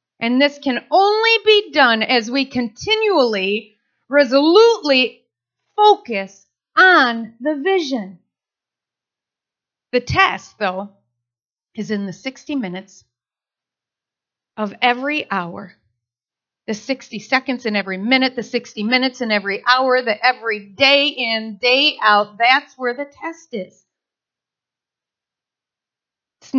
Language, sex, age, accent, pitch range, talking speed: English, female, 40-59, American, 210-285 Hz, 110 wpm